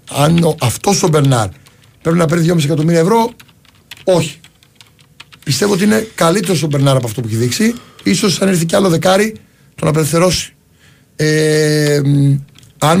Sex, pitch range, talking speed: male, 125-160 Hz, 150 wpm